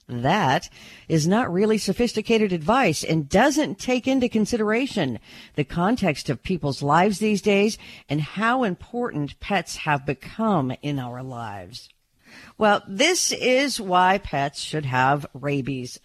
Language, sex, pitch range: English, female, 140-210 Hz